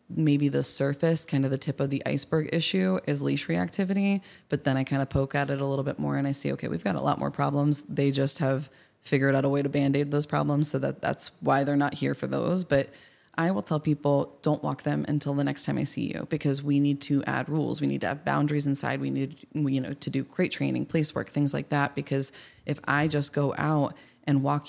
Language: English